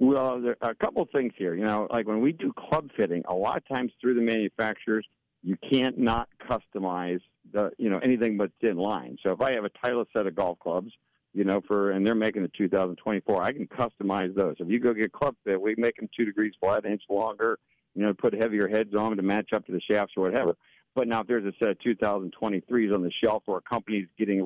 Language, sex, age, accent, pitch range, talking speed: English, male, 50-69, American, 95-115 Hz, 245 wpm